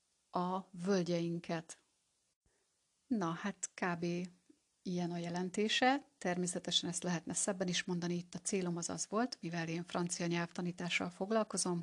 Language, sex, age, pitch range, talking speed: Hungarian, female, 30-49, 170-205 Hz, 125 wpm